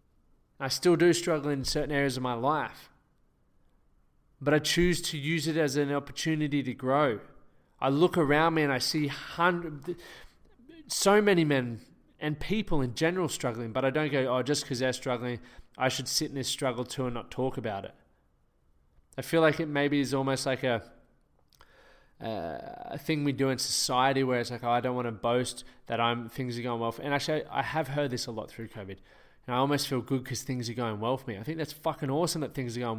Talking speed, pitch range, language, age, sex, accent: 215 wpm, 125-150 Hz, English, 20-39, male, Australian